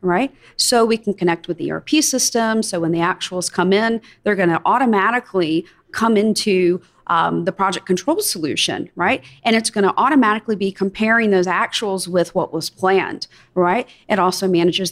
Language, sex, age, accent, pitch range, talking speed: English, female, 40-59, American, 185-235 Hz, 175 wpm